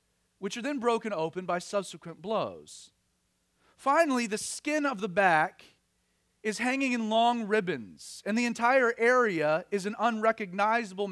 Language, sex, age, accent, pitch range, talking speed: English, male, 40-59, American, 150-240 Hz, 140 wpm